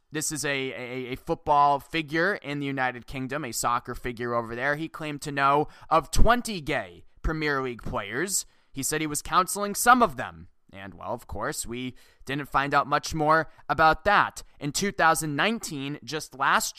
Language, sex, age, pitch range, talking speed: English, male, 20-39, 125-165 Hz, 180 wpm